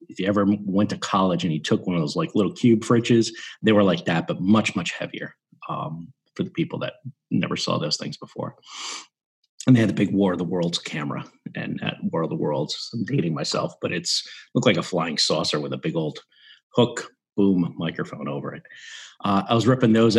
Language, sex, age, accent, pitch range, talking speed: English, male, 40-59, American, 85-115 Hz, 220 wpm